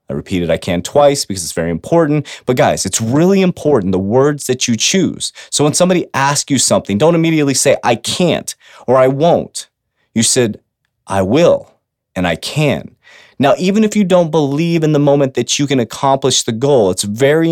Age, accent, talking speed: 30-49, American, 195 wpm